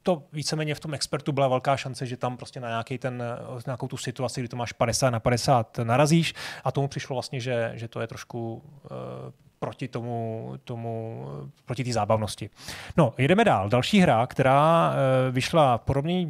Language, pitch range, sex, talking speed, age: Czech, 120-145 Hz, male, 185 wpm, 30-49